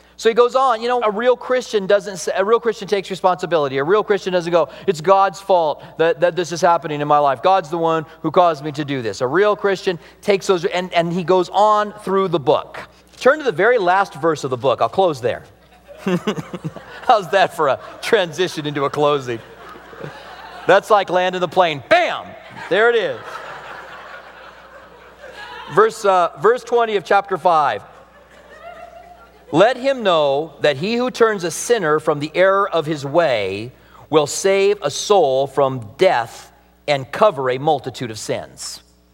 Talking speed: 180 wpm